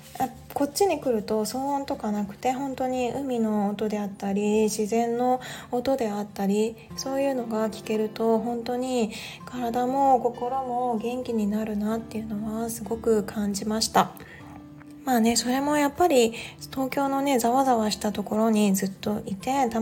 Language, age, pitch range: Japanese, 20-39, 215-275 Hz